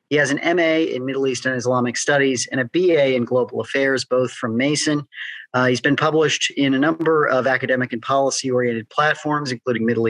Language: English